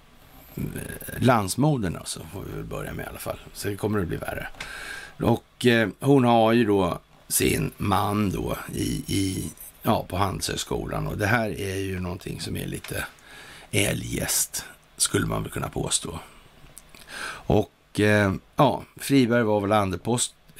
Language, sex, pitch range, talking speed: Swedish, male, 95-120 Hz, 150 wpm